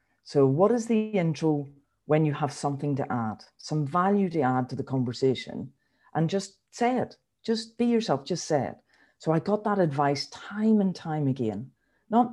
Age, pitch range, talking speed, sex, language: 40-59, 140-185 Hz, 185 wpm, female, English